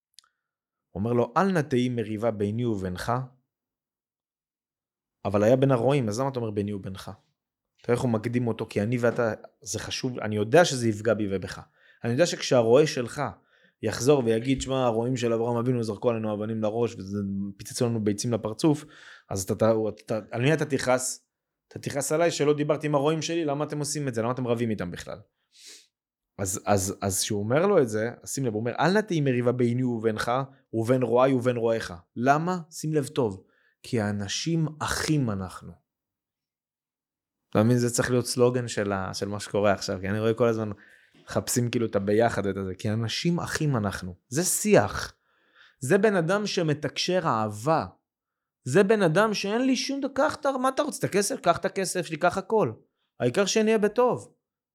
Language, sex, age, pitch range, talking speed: Hebrew, male, 20-39, 110-150 Hz, 170 wpm